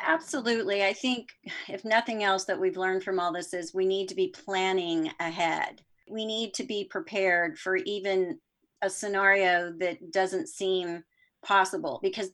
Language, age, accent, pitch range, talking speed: English, 40-59, American, 180-230 Hz, 160 wpm